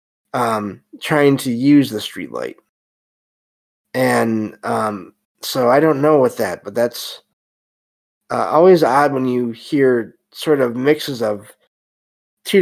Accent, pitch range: American, 110-130 Hz